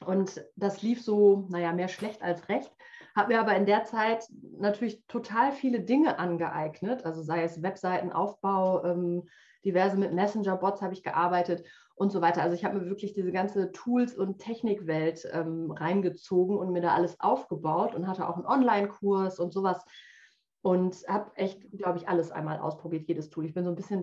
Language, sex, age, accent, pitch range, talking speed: German, female, 30-49, German, 175-210 Hz, 180 wpm